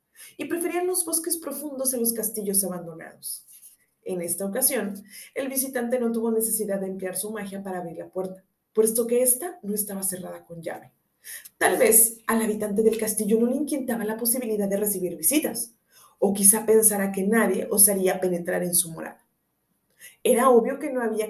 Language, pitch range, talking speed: Spanish, 200-255 Hz, 175 wpm